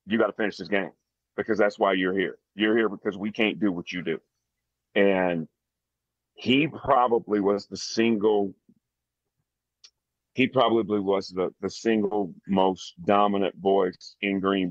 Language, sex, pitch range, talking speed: English, male, 85-105 Hz, 150 wpm